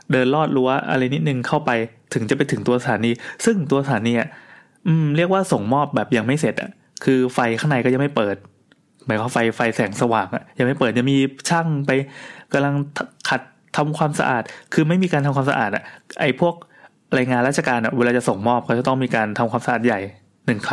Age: 20-39